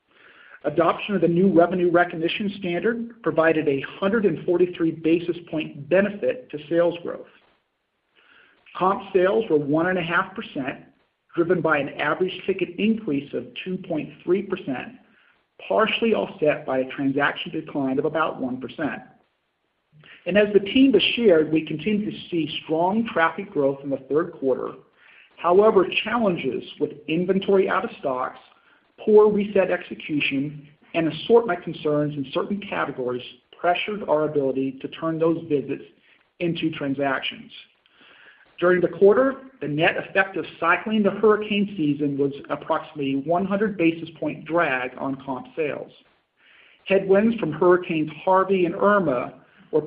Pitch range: 150-195 Hz